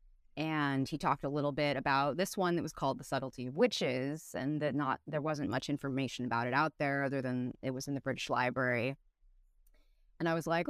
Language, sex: English, female